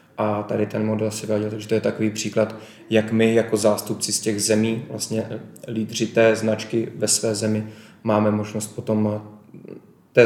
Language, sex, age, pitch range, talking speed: Czech, male, 20-39, 105-110 Hz, 170 wpm